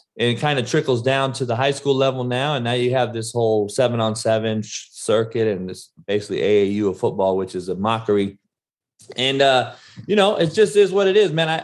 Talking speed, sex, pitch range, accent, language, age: 220 wpm, male, 100-135 Hz, American, English, 30-49